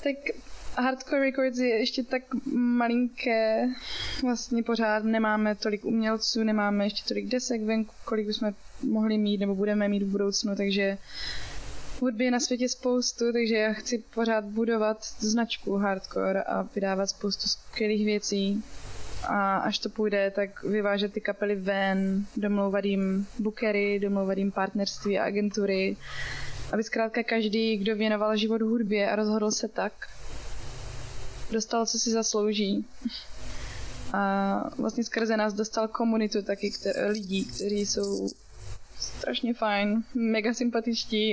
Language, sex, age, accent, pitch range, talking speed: Czech, female, 20-39, native, 200-225 Hz, 130 wpm